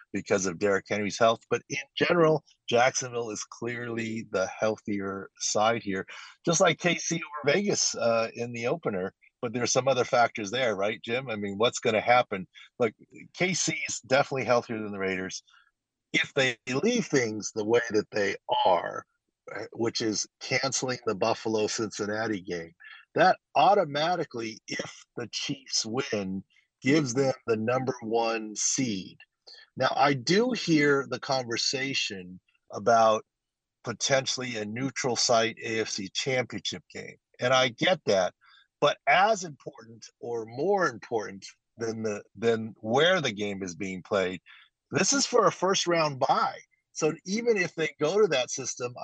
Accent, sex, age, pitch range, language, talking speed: American, male, 50-69, 105-140 Hz, English, 150 wpm